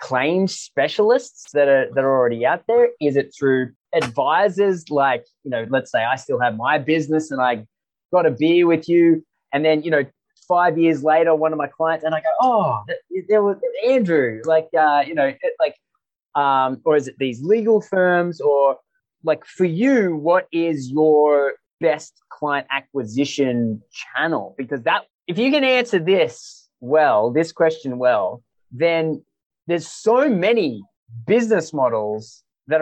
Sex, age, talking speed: male, 20-39, 170 wpm